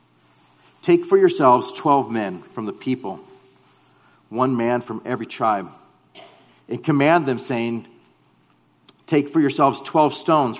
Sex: male